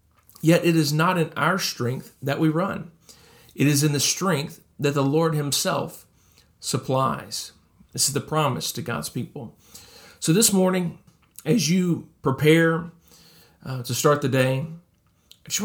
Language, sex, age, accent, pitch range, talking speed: English, male, 40-59, American, 120-160 Hz, 155 wpm